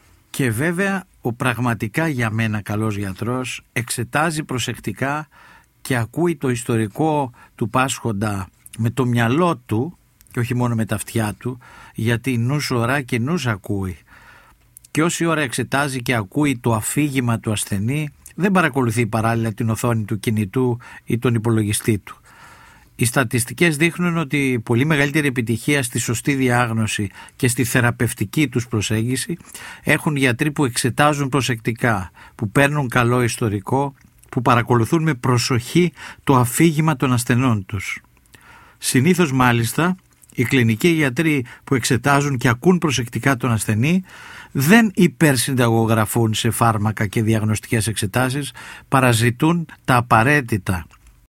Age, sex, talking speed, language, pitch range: 50-69, male, 125 wpm, Greek, 115-145 Hz